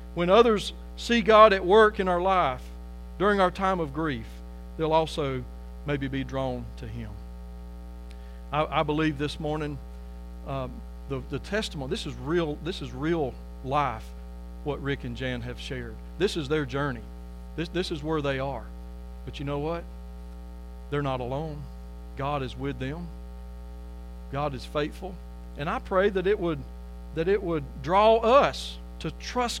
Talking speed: 160 wpm